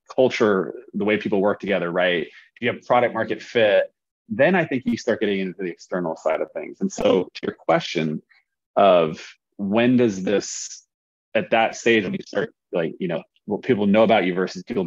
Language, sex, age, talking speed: English, male, 30-49, 200 wpm